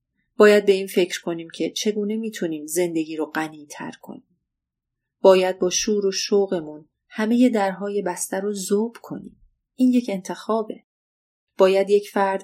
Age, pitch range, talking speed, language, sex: 30-49, 170-210 Hz, 140 wpm, Persian, female